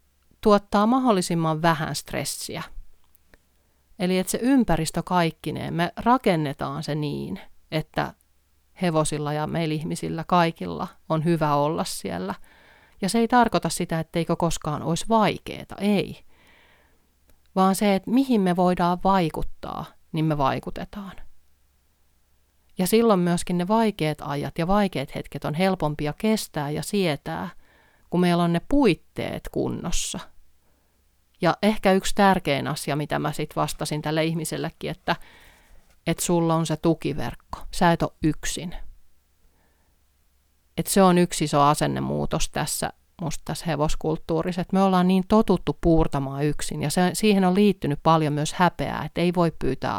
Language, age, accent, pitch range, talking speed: Finnish, 30-49, native, 130-180 Hz, 135 wpm